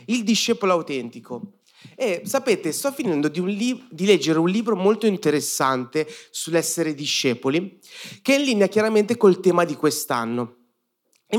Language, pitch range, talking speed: Italian, 150-215 Hz, 135 wpm